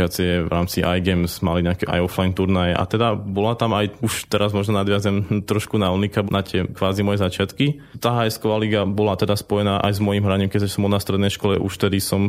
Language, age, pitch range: Slovak, 20-39, 95-105 Hz